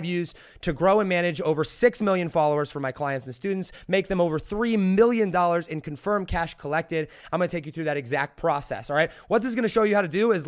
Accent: American